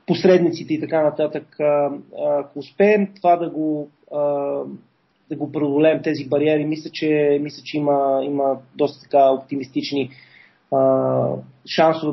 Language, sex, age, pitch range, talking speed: Bulgarian, male, 30-49, 145-165 Hz, 120 wpm